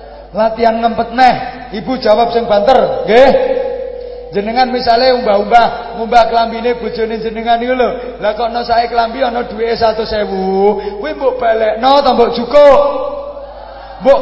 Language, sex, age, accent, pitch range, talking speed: English, male, 30-49, Indonesian, 140-235 Hz, 140 wpm